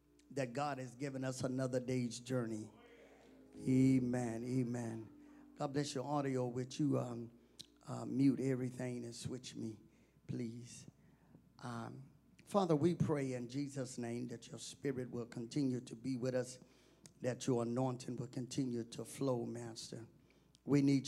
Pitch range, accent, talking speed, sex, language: 125-150 Hz, American, 140 wpm, male, English